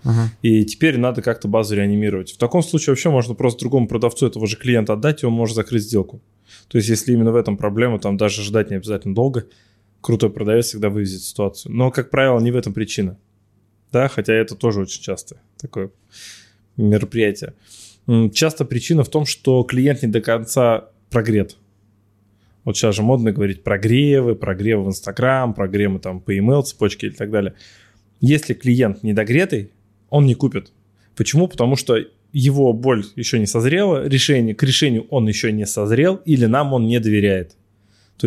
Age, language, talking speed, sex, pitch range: 20-39, Russian, 170 wpm, male, 105-130 Hz